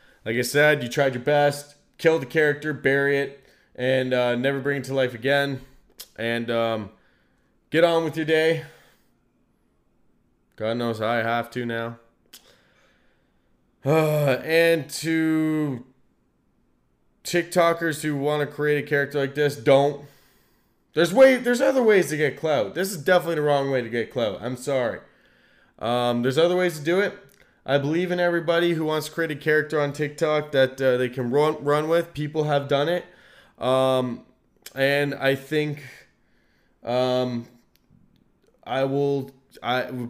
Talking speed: 155 wpm